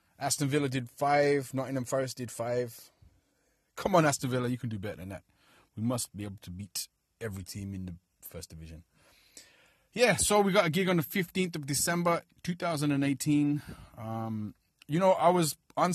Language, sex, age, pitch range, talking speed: English, male, 30-49, 110-140 Hz, 180 wpm